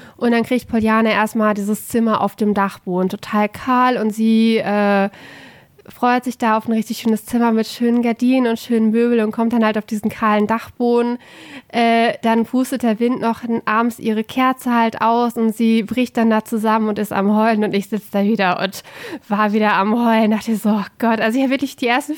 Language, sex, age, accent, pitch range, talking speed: German, female, 20-39, German, 220-260 Hz, 220 wpm